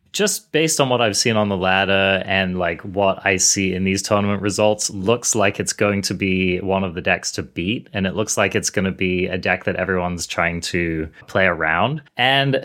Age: 20-39